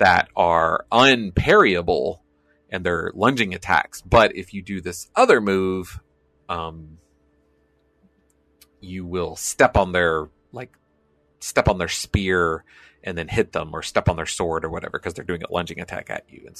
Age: 30-49